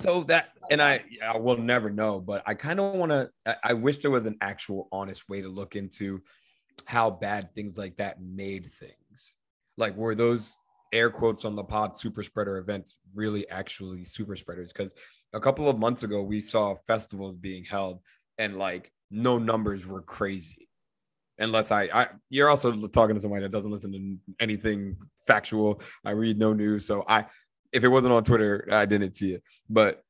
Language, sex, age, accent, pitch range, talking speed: English, male, 30-49, American, 100-115 Hz, 190 wpm